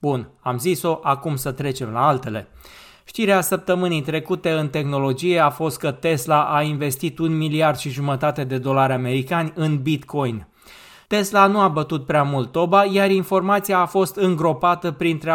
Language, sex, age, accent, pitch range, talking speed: Romanian, male, 20-39, native, 150-195 Hz, 160 wpm